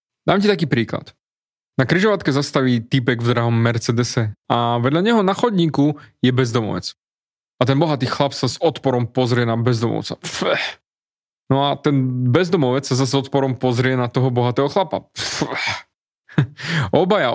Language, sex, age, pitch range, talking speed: Slovak, male, 20-39, 125-155 Hz, 140 wpm